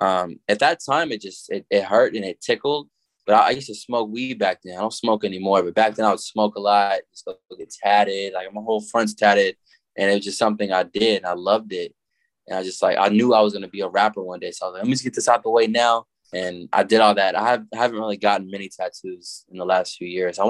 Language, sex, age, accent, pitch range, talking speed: English, male, 20-39, American, 95-115 Hz, 290 wpm